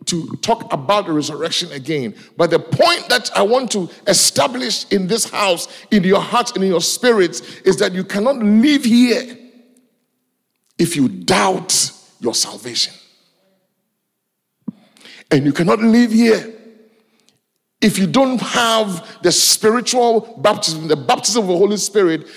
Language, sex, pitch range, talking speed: English, male, 155-220 Hz, 140 wpm